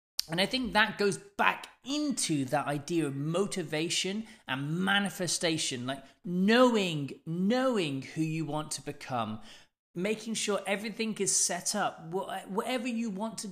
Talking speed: 140 wpm